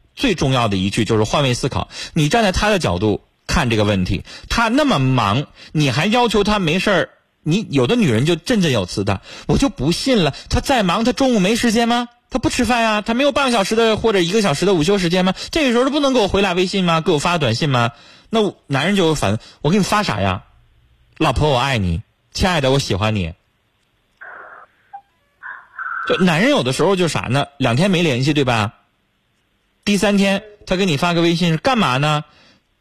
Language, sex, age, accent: Chinese, male, 30-49, native